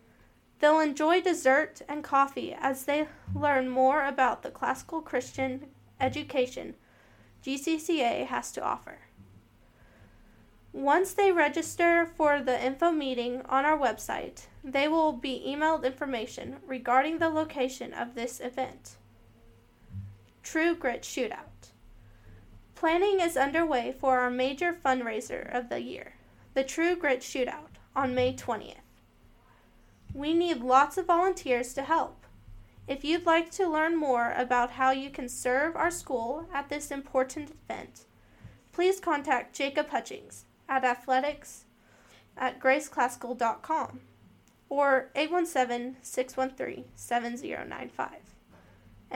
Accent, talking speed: American, 115 wpm